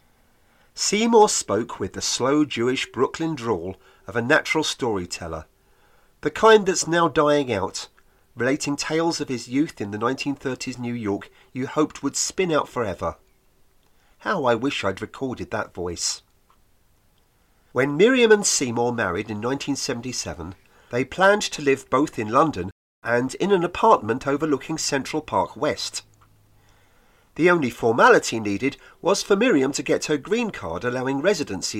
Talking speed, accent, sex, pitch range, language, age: 145 wpm, British, male, 115-175 Hz, English, 40-59